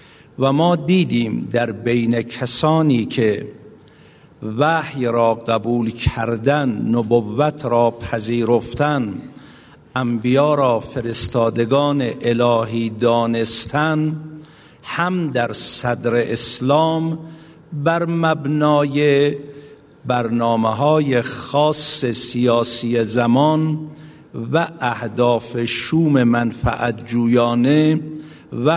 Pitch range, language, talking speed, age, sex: 120-155 Hz, Persian, 75 wpm, 60-79, male